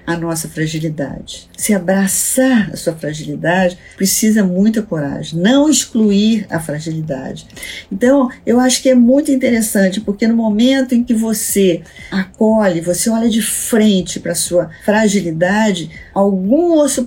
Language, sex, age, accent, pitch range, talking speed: Portuguese, female, 50-69, Brazilian, 185-235 Hz, 135 wpm